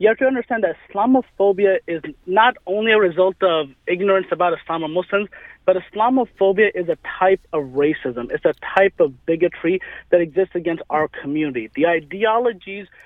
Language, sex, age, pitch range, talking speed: English, male, 30-49, 170-200 Hz, 170 wpm